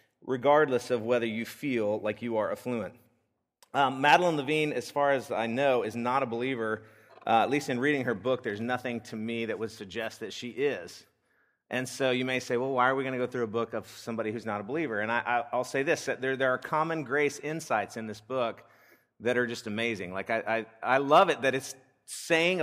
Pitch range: 125-145 Hz